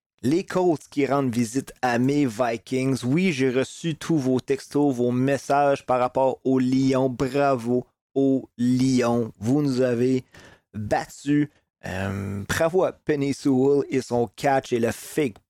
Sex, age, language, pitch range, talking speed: male, 30-49, French, 120-140 Hz, 145 wpm